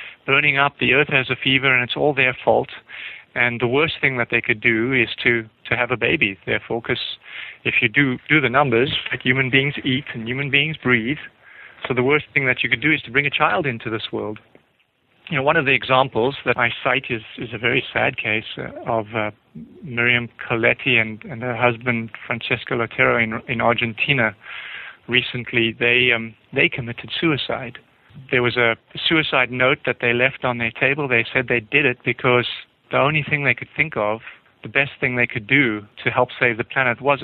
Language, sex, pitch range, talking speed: English, male, 115-135 Hz, 205 wpm